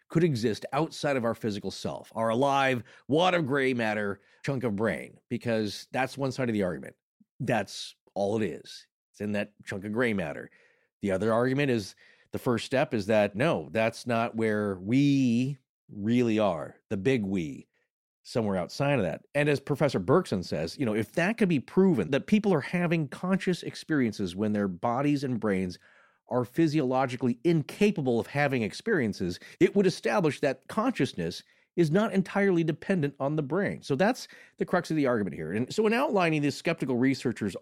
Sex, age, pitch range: male, 40-59, 115-175 Hz